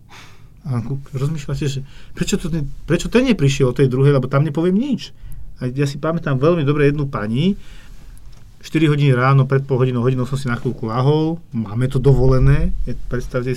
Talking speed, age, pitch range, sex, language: 175 wpm, 40-59, 120-140 Hz, male, Slovak